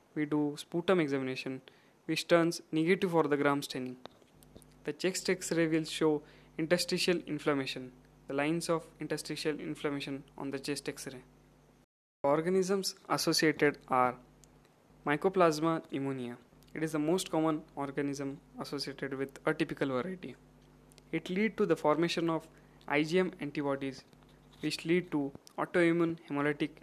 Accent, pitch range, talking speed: Indian, 135-160 Hz, 125 wpm